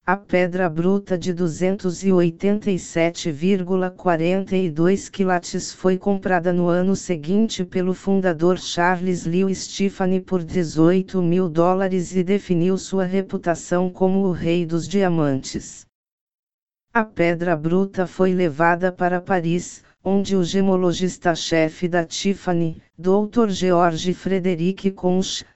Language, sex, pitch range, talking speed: Portuguese, female, 175-190 Hz, 105 wpm